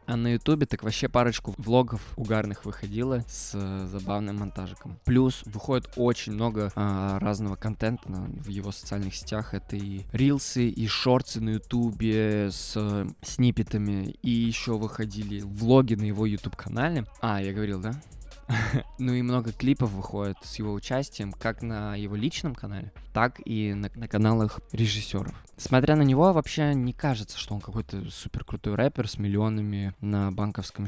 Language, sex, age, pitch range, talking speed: Russian, male, 20-39, 105-130 Hz, 150 wpm